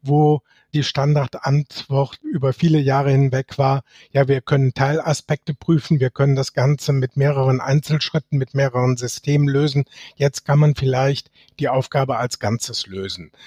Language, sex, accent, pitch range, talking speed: English, male, German, 130-150 Hz, 145 wpm